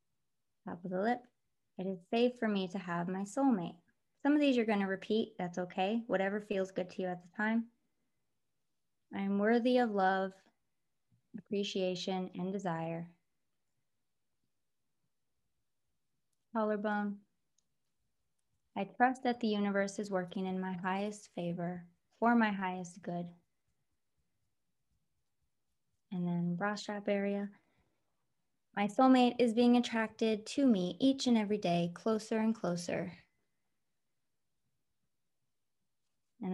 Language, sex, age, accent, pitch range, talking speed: English, female, 20-39, American, 180-220 Hz, 120 wpm